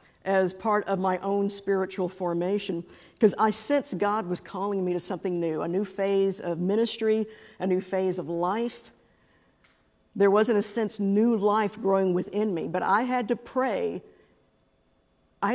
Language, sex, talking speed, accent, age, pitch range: English, female, 165 wpm, American, 50-69, 180-220 Hz